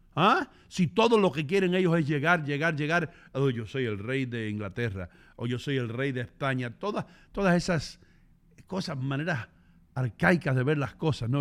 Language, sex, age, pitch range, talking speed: English, male, 50-69, 130-190 Hz, 195 wpm